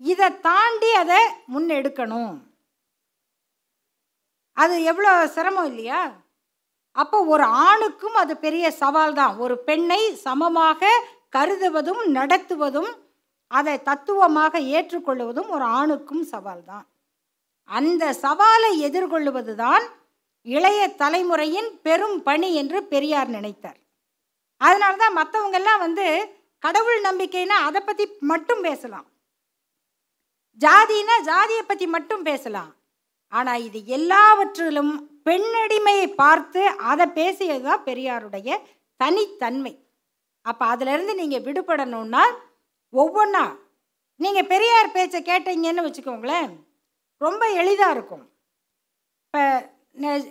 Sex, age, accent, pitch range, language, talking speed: female, 50-69, native, 280-385 Hz, Tamil, 95 wpm